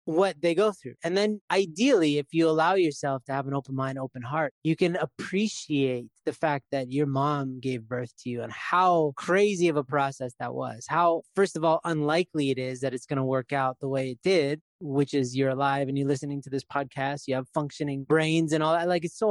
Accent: American